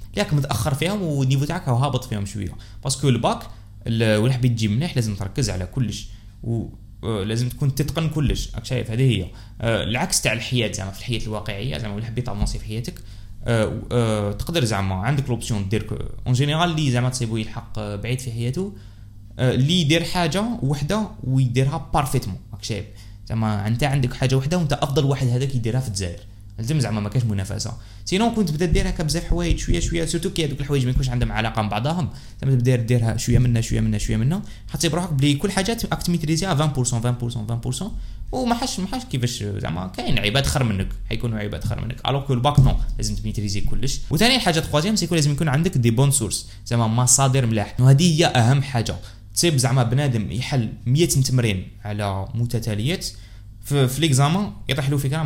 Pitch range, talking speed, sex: 105-145 Hz, 190 wpm, male